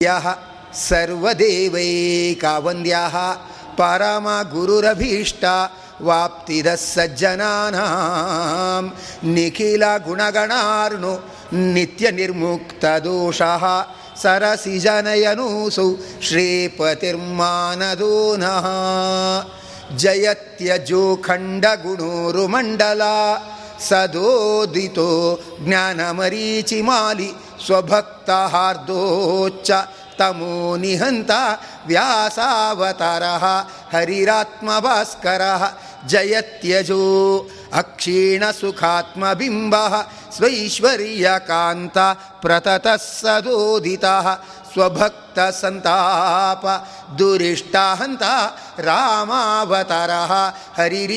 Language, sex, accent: Kannada, male, native